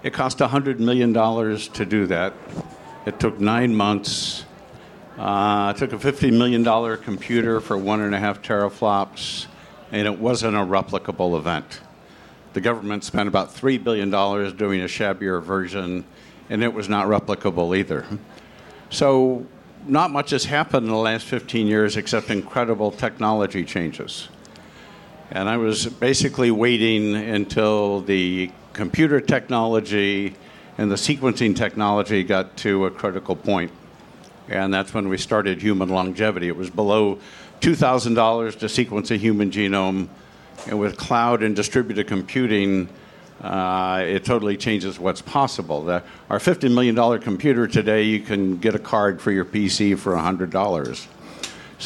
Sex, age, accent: male, 60-79, American